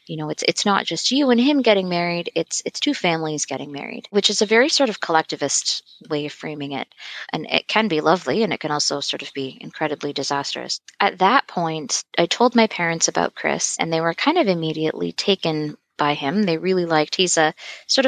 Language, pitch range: English, 160-200 Hz